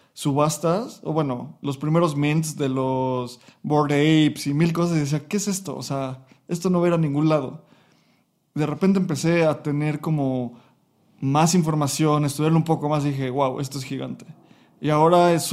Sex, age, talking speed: male, 20-39, 190 wpm